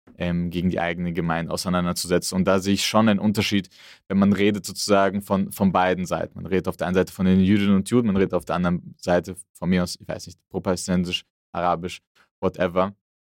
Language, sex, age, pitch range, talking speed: German, male, 20-39, 90-105 Hz, 205 wpm